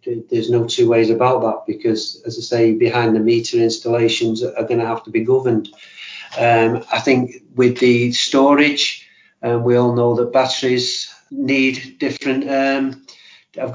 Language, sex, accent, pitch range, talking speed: English, male, British, 120-130 Hz, 165 wpm